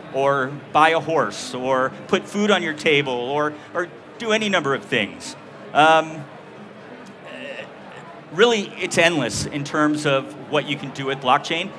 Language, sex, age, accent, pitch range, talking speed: English, male, 40-59, American, 145-175 Hz, 155 wpm